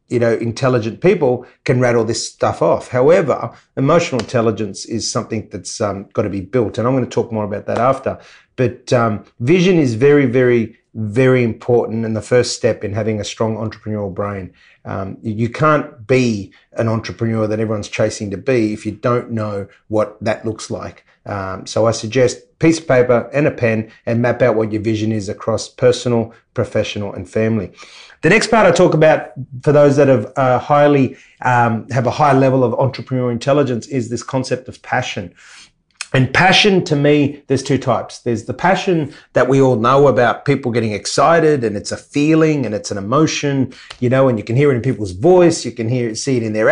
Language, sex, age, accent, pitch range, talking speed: English, male, 30-49, Australian, 110-135 Hz, 200 wpm